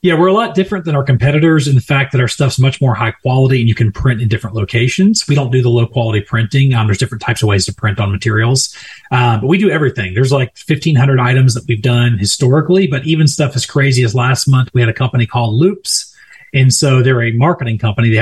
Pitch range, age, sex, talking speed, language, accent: 115-145 Hz, 30-49, male, 245 wpm, English, American